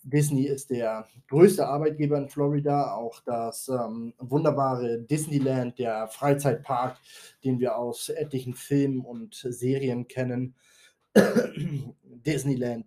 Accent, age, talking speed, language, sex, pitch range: German, 20-39, 105 wpm, German, male, 120-140 Hz